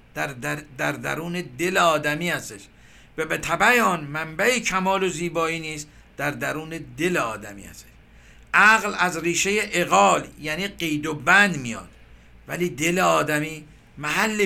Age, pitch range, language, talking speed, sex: 50-69, 145-195 Hz, Persian, 140 wpm, male